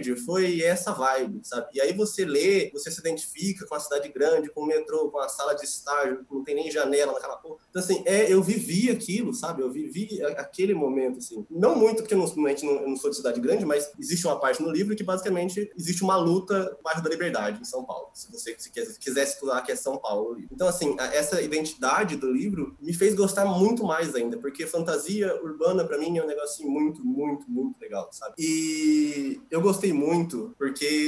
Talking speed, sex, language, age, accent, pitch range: 215 wpm, male, Portuguese, 20-39, Brazilian, 135-195 Hz